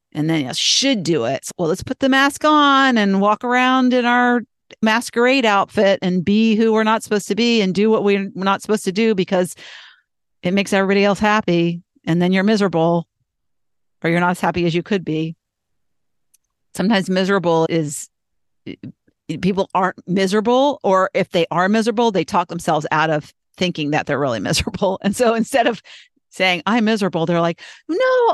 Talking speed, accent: 180 wpm, American